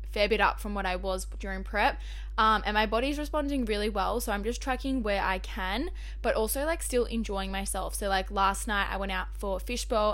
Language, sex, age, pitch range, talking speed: English, female, 10-29, 195-225 Hz, 225 wpm